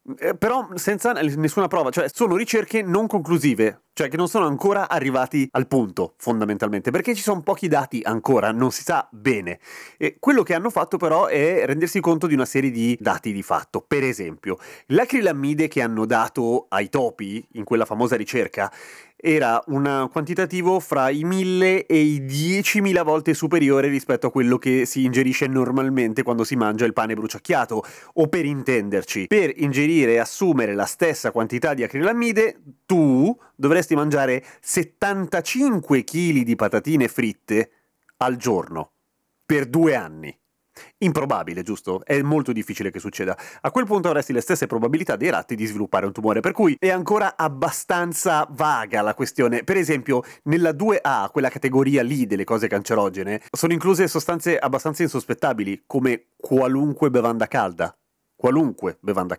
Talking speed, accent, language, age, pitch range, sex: 155 wpm, native, Italian, 30-49, 120-175 Hz, male